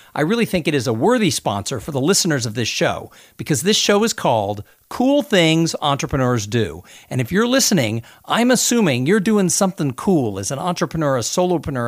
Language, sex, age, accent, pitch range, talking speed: English, male, 50-69, American, 115-175 Hz, 190 wpm